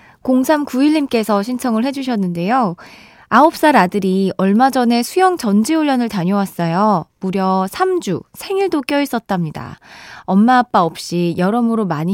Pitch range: 185-285 Hz